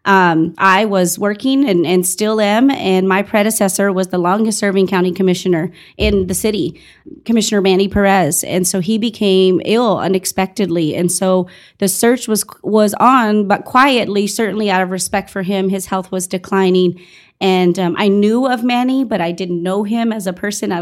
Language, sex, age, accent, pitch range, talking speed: English, female, 30-49, American, 190-220 Hz, 180 wpm